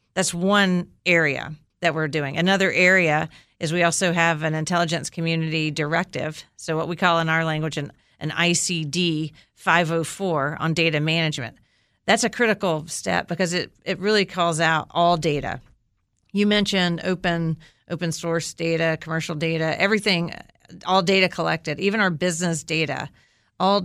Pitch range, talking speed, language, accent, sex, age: 160-185 Hz, 150 wpm, English, American, female, 40-59